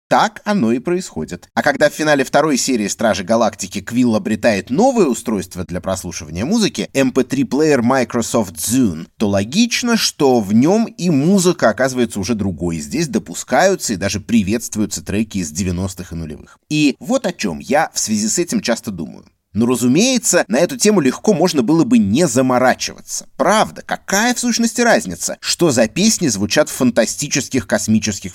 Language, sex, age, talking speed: Russian, male, 30-49, 160 wpm